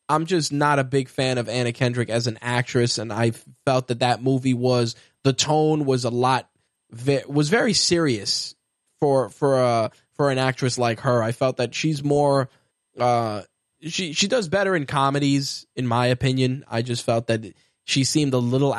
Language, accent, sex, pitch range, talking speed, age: English, American, male, 120-140 Hz, 185 wpm, 10-29